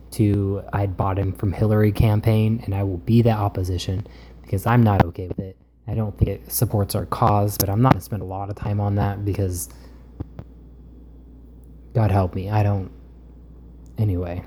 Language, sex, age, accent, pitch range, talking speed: English, male, 20-39, American, 95-115 Hz, 185 wpm